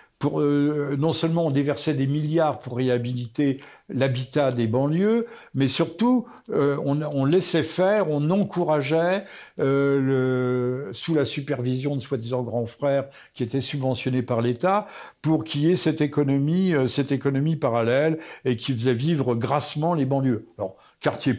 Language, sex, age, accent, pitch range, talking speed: French, male, 60-79, French, 130-155 Hz, 155 wpm